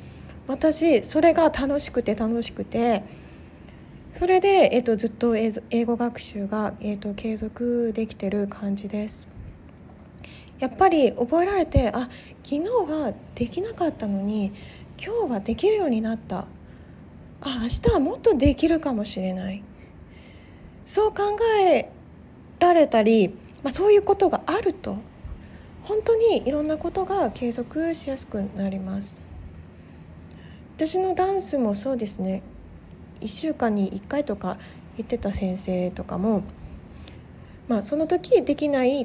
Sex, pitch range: female, 210-330 Hz